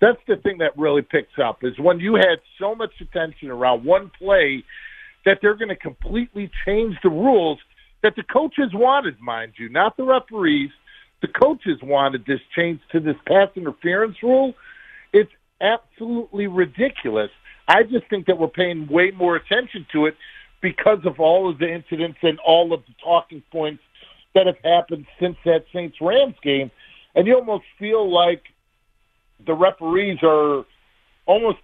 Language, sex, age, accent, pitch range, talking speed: English, male, 50-69, American, 160-220 Hz, 165 wpm